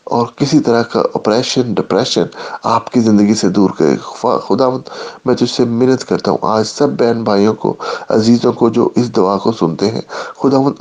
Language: English